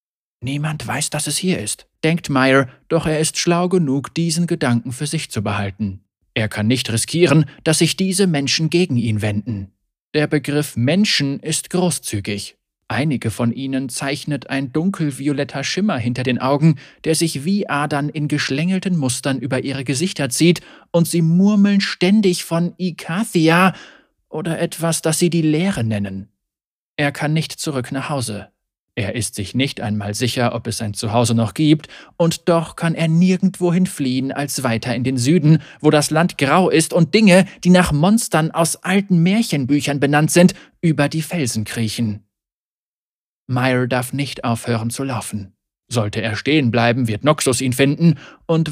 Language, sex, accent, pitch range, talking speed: German, male, German, 125-170 Hz, 165 wpm